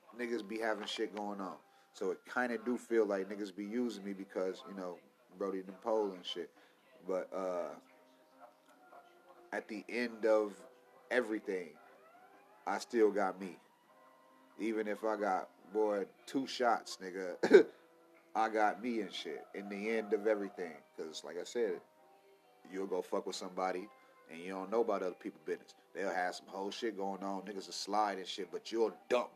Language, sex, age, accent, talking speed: English, male, 30-49, American, 175 wpm